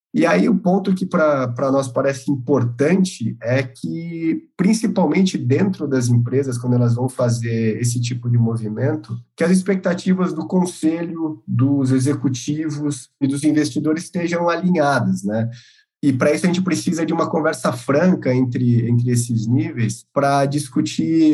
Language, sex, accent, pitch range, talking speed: Portuguese, male, Brazilian, 120-145 Hz, 145 wpm